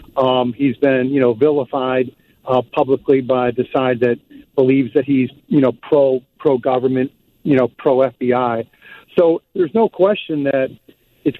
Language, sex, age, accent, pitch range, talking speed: English, male, 50-69, American, 130-175 Hz, 145 wpm